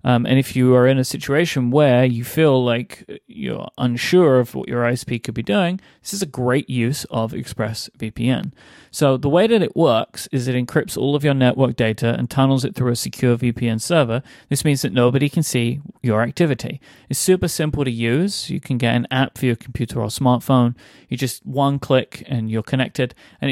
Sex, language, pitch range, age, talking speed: male, English, 120-145 Hz, 30-49, 205 wpm